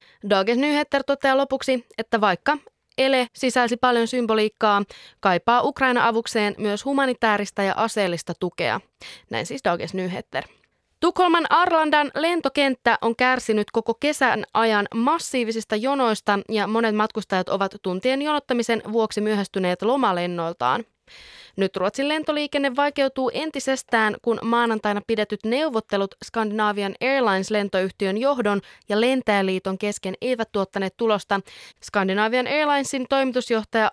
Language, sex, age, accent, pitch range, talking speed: Finnish, female, 20-39, native, 195-255 Hz, 110 wpm